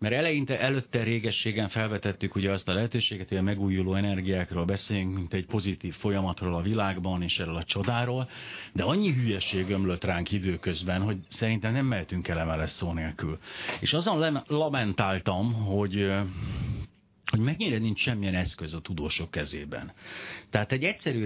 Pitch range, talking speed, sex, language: 95-120 Hz, 150 wpm, male, Hungarian